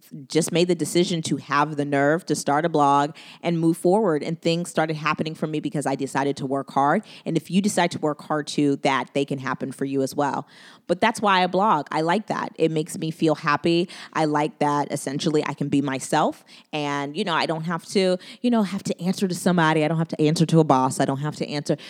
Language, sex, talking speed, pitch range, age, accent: English, female, 250 wpm, 140-175 Hz, 20-39, American